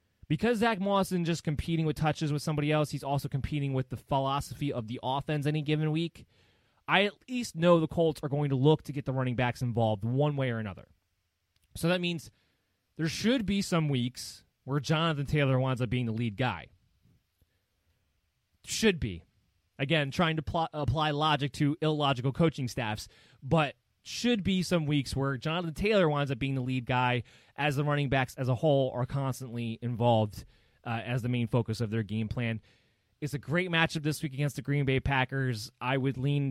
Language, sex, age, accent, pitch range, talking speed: English, male, 20-39, American, 115-150 Hz, 195 wpm